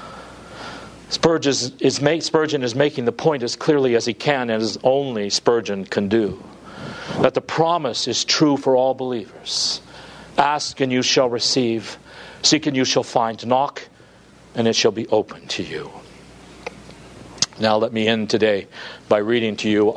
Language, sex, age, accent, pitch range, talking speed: English, male, 50-69, American, 120-175 Hz, 165 wpm